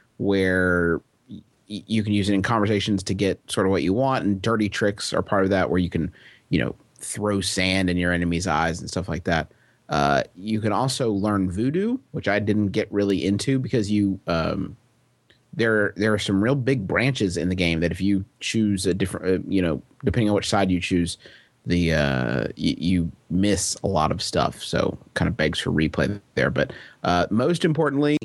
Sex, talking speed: male, 205 wpm